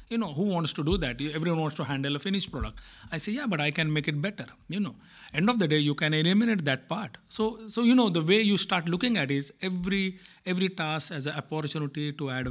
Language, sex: Swedish, male